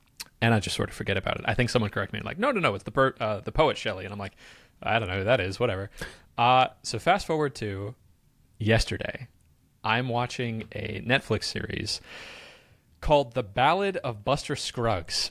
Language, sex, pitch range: English, male, 105-135 Hz